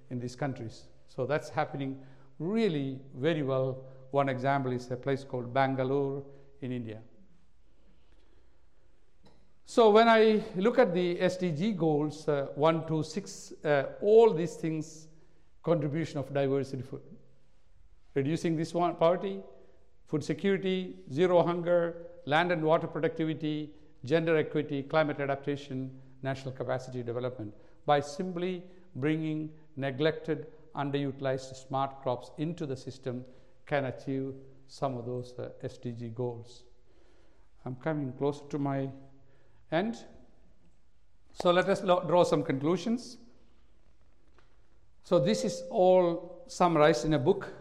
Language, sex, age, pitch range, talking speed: English, male, 60-79, 130-165 Hz, 120 wpm